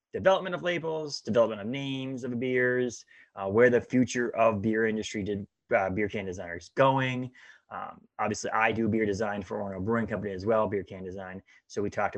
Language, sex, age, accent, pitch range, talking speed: English, male, 20-39, American, 95-120 Hz, 190 wpm